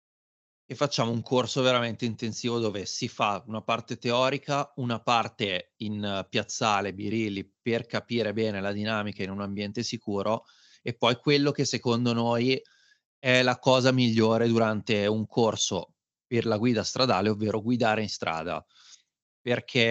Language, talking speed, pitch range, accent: Italian, 150 wpm, 105-120 Hz, native